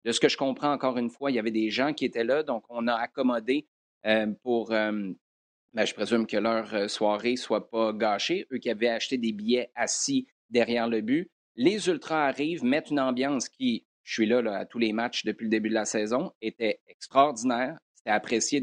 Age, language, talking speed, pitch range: 30-49, French, 220 wpm, 115-140 Hz